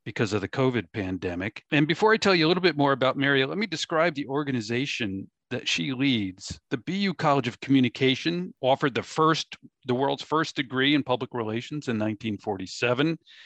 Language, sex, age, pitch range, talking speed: English, male, 50-69, 110-145 Hz, 185 wpm